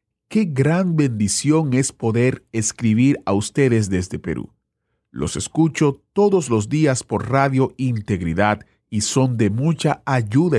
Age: 40-59